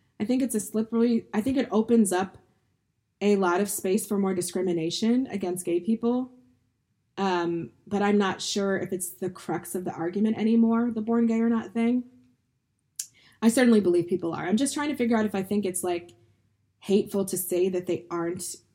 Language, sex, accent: English, female, American